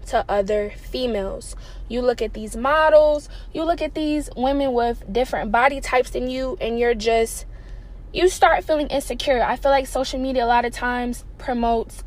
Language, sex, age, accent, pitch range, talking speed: English, female, 10-29, American, 230-275 Hz, 180 wpm